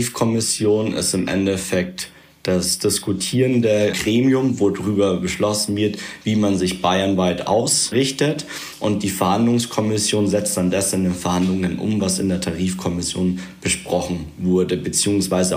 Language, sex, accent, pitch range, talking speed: German, male, German, 90-100 Hz, 130 wpm